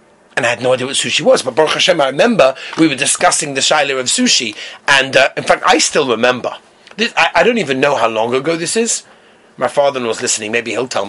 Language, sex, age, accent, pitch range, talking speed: English, male, 30-49, British, 150-245 Hz, 245 wpm